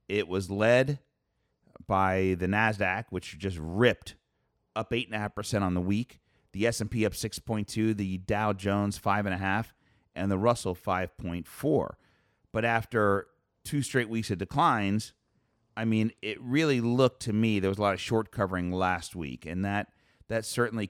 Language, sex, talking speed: English, male, 150 wpm